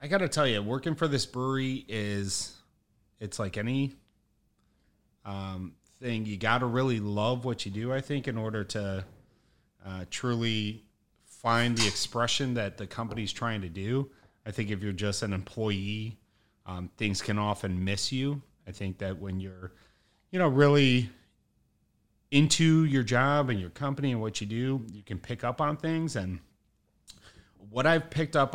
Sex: male